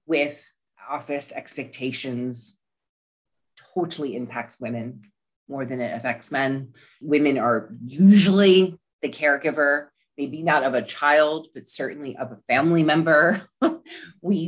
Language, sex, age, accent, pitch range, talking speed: English, female, 30-49, American, 135-170 Hz, 115 wpm